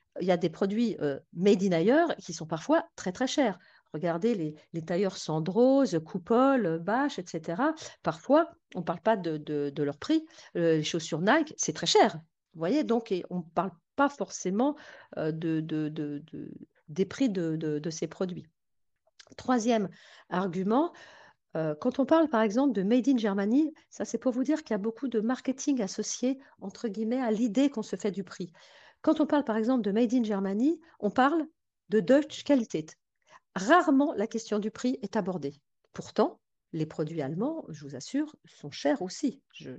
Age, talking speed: 50-69, 200 wpm